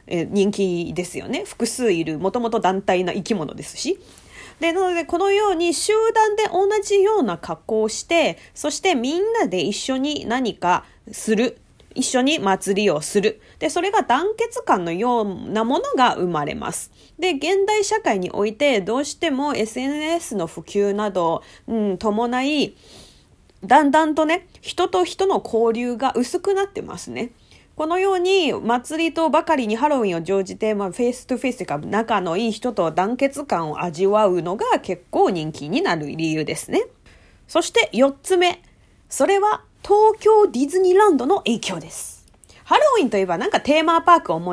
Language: Japanese